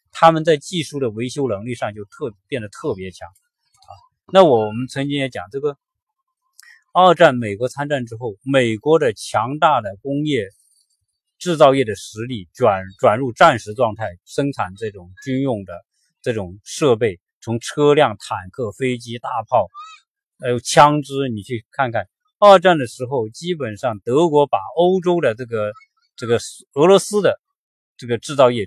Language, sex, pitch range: Chinese, male, 105-150 Hz